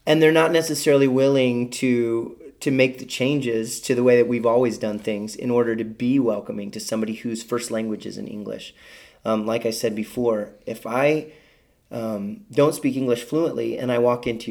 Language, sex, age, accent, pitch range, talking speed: English, male, 30-49, American, 110-135 Hz, 195 wpm